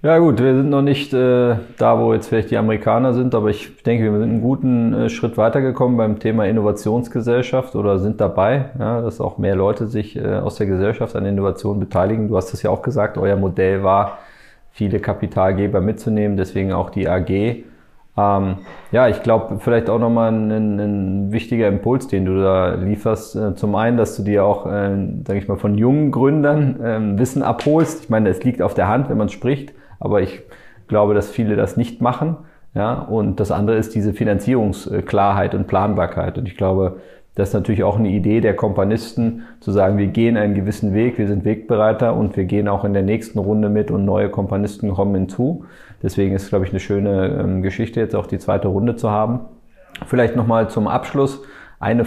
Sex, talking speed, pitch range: male, 195 wpm, 100-120 Hz